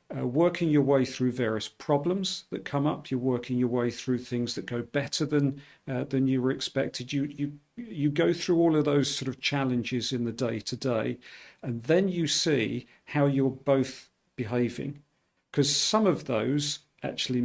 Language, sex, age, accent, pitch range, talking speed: English, male, 50-69, British, 125-145 Hz, 180 wpm